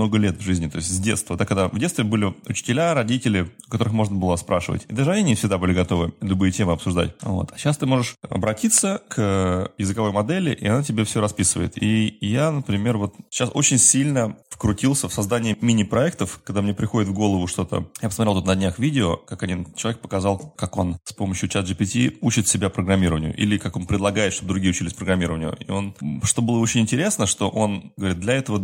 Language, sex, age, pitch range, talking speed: Russian, male, 30-49, 95-120 Hz, 205 wpm